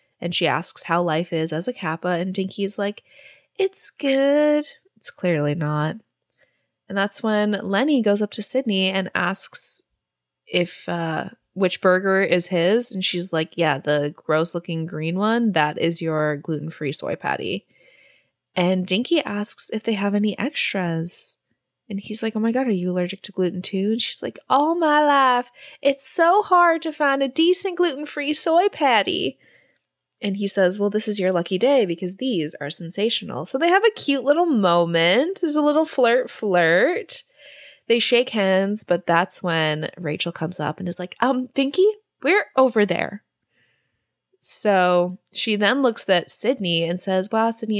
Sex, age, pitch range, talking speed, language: female, 20-39, 180-270 Hz, 175 wpm, English